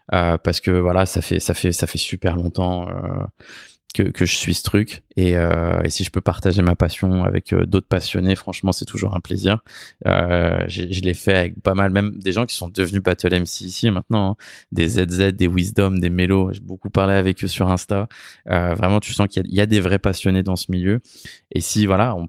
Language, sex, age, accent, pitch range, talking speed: French, male, 20-39, French, 90-100 Hz, 230 wpm